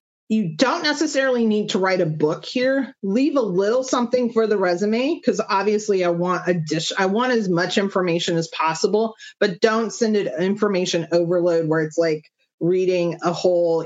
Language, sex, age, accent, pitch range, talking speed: English, female, 30-49, American, 170-225 Hz, 180 wpm